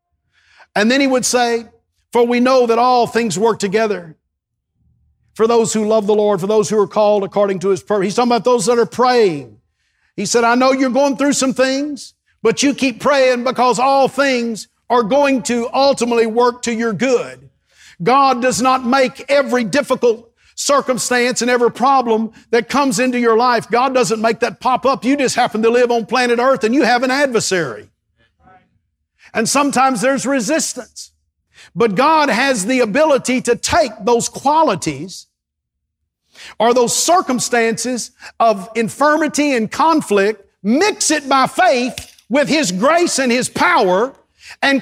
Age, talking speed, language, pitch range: 50-69, 165 wpm, English, 220-270 Hz